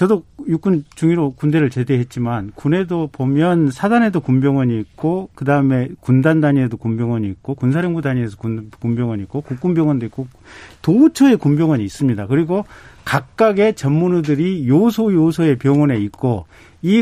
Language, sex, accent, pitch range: Korean, male, native, 120-170 Hz